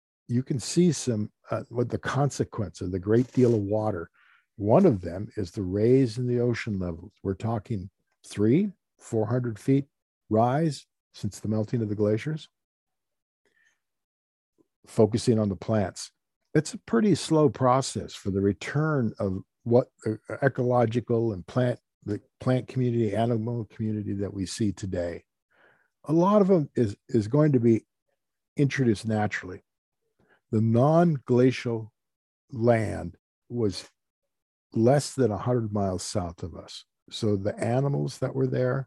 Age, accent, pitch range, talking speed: 50-69, American, 105-130 Hz, 140 wpm